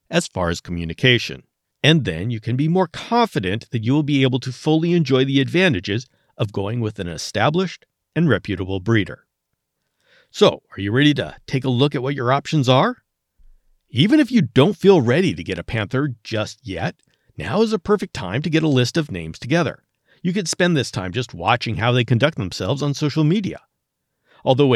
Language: English